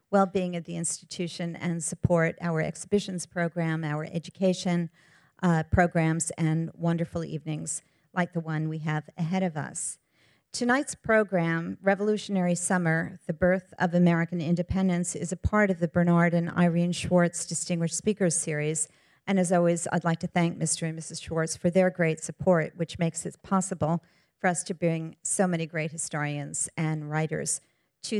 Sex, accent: female, American